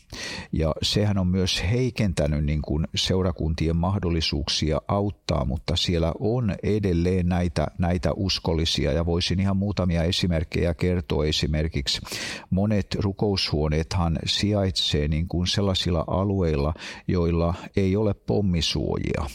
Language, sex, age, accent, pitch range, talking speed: Finnish, male, 50-69, native, 80-95 Hz, 95 wpm